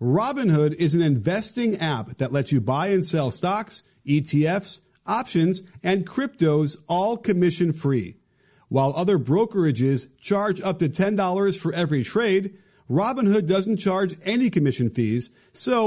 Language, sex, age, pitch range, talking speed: English, male, 40-59, 150-200 Hz, 130 wpm